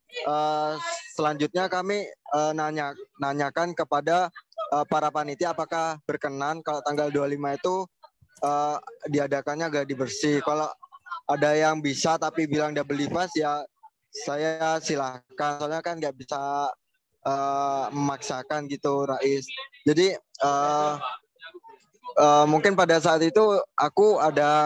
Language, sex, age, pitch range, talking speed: Indonesian, male, 20-39, 150-175 Hz, 120 wpm